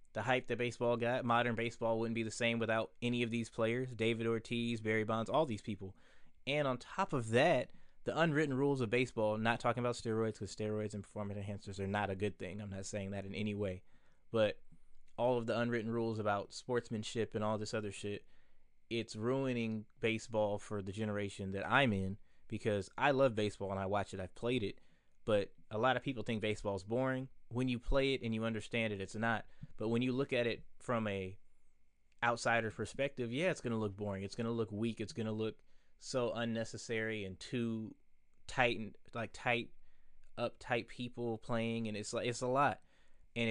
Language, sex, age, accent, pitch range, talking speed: English, male, 20-39, American, 100-120 Hz, 205 wpm